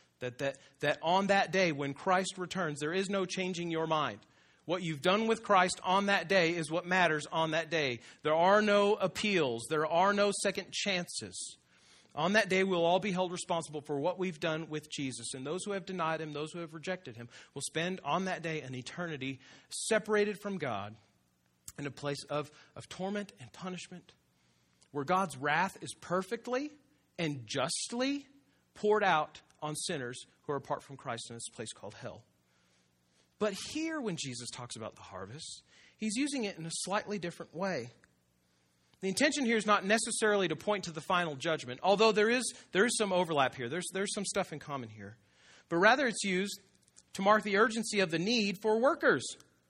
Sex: male